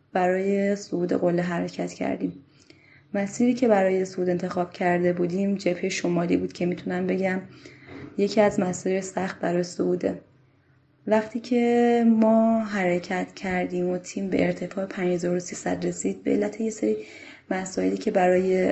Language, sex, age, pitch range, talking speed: Persian, female, 20-39, 175-195 Hz, 130 wpm